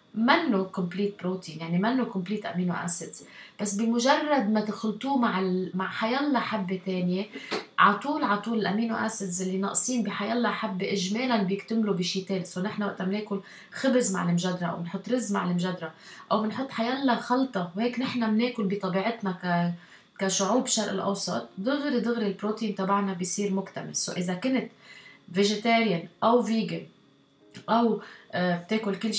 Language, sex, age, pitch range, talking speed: Arabic, female, 20-39, 185-225 Hz, 145 wpm